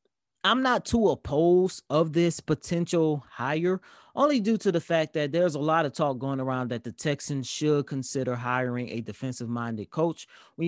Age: 20-39